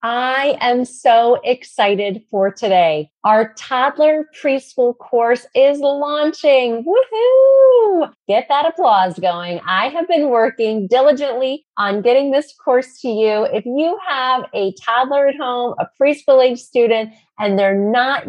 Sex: female